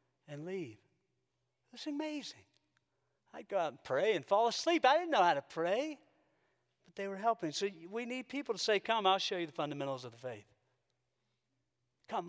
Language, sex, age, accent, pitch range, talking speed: English, male, 40-59, American, 125-165 Hz, 185 wpm